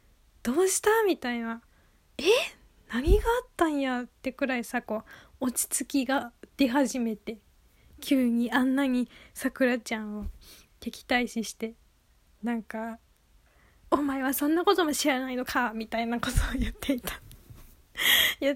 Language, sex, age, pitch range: Japanese, female, 10-29, 235-290 Hz